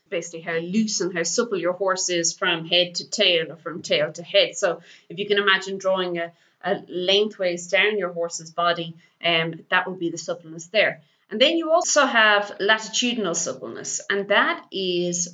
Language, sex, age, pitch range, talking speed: English, female, 30-49, 175-210 Hz, 190 wpm